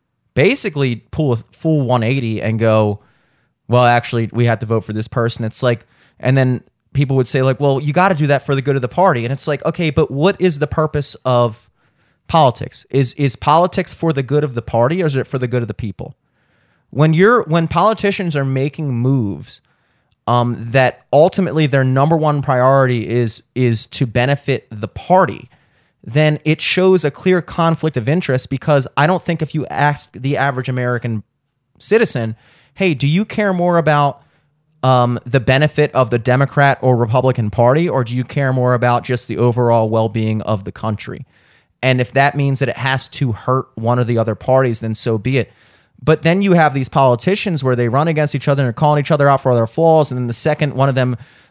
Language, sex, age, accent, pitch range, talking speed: English, male, 30-49, American, 120-150 Hz, 205 wpm